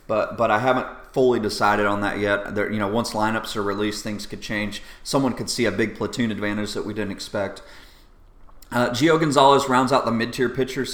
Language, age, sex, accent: English, 30-49, male, American